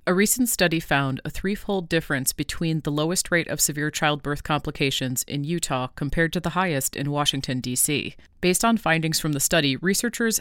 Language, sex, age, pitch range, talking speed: English, female, 30-49, 145-170 Hz, 180 wpm